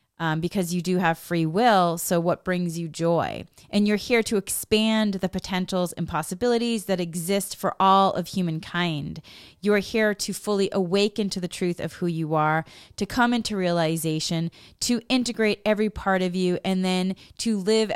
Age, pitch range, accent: 30-49, 170-210 Hz, American